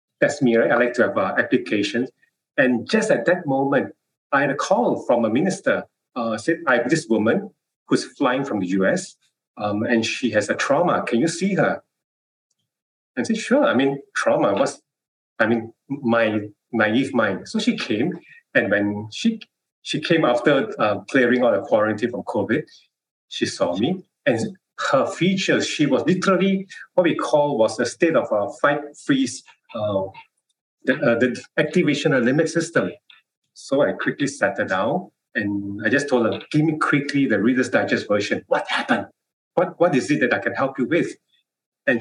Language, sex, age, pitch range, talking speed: English, male, 30-49, 115-190 Hz, 185 wpm